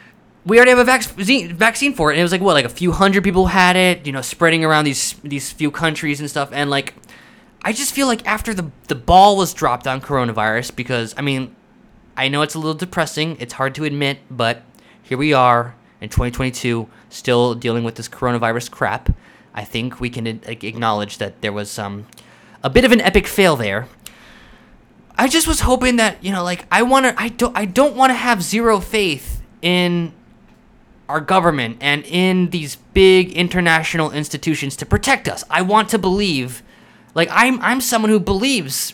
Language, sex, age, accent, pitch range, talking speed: English, male, 20-39, American, 135-210 Hz, 195 wpm